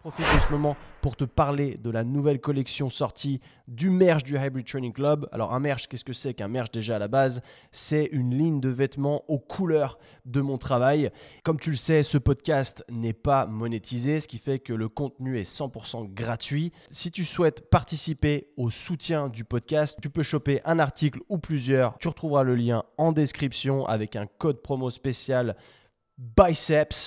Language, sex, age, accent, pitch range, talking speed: French, male, 20-39, French, 125-150 Hz, 195 wpm